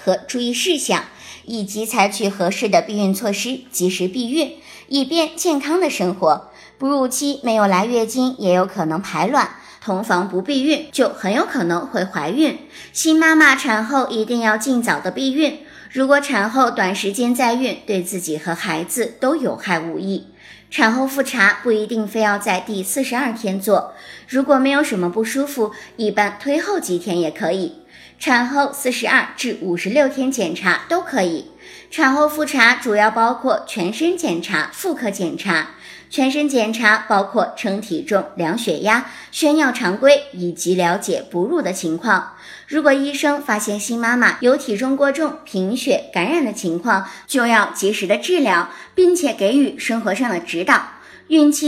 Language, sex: Chinese, male